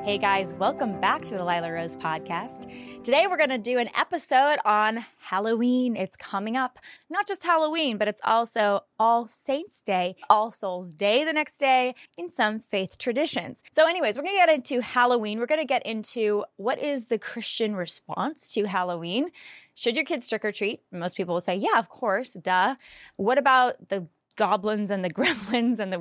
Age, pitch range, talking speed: 10-29, 195-255 Hz, 190 wpm